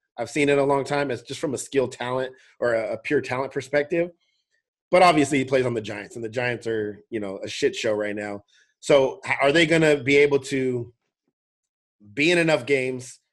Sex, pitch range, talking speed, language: male, 115-140 Hz, 210 wpm, English